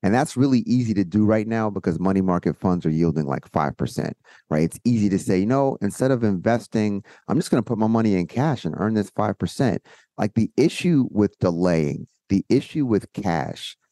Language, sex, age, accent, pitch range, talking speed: English, male, 30-49, American, 90-120 Hz, 200 wpm